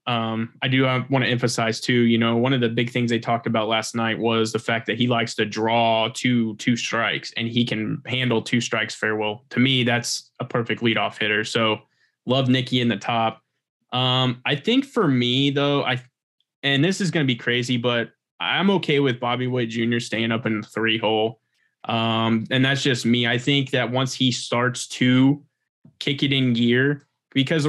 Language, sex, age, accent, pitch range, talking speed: English, male, 20-39, American, 115-135 Hz, 200 wpm